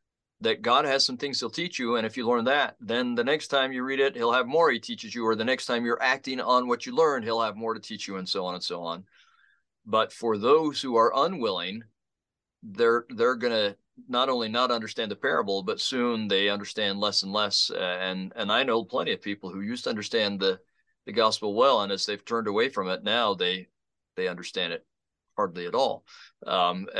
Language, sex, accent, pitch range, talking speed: English, male, American, 100-130 Hz, 225 wpm